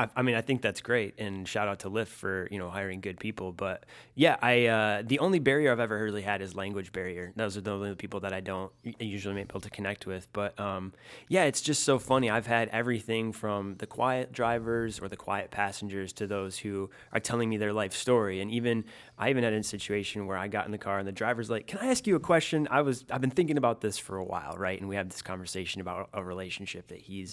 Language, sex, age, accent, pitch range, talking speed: English, male, 20-39, American, 100-120 Hz, 255 wpm